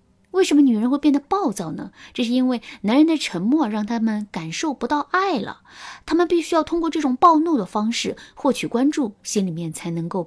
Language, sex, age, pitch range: Chinese, female, 20-39, 195-295 Hz